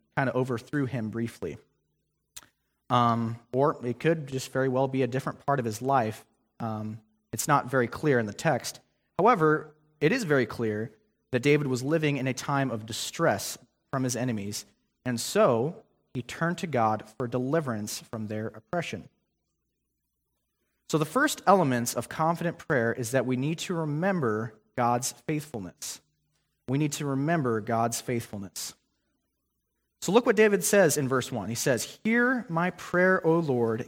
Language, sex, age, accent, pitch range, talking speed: English, male, 30-49, American, 115-165 Hz, 160 wpm